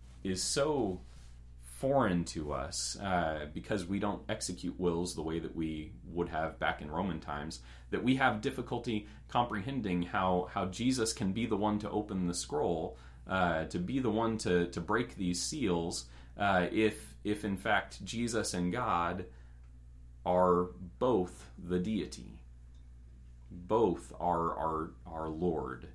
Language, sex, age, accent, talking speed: English, male, 30-49, American, 150 wpm